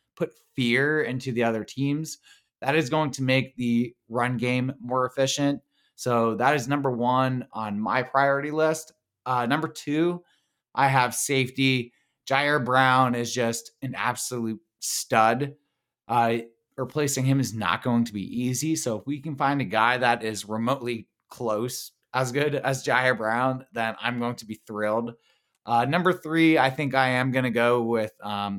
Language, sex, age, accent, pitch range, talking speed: English, male, 20-39, American, 115-140 Hz, 170 wpm